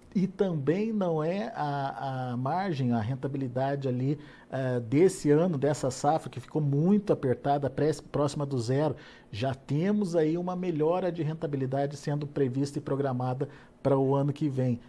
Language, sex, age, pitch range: Portuguese, male, 50-69, 130-160 Hz